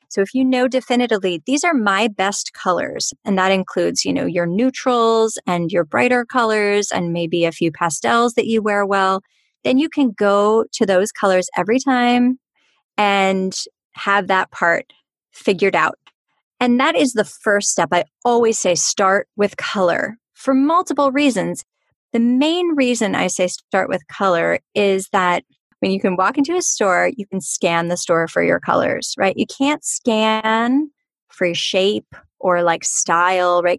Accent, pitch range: American, 185-255 Hz